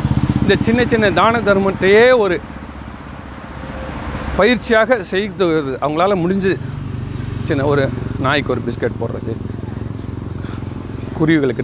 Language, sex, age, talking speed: Tamil, male, 40-59, 95 wpm